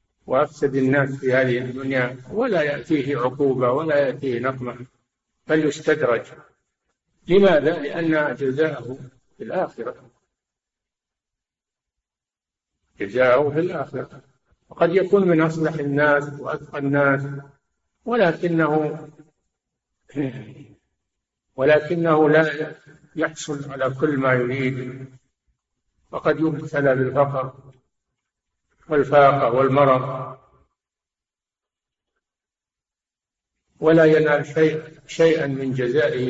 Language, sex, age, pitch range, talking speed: Arabic, male, 50-69, 130-155 Hz, 75 wpm